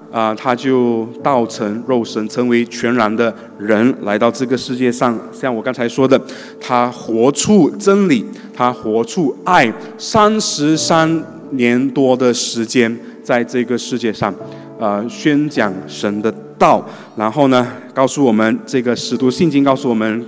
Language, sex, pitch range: Chinese, male, 120-180 Hz